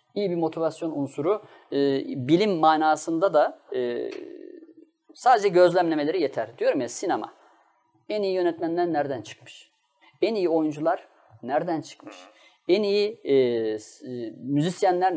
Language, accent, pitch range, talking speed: Turkish, native, 150-220 Hz, 120 wpm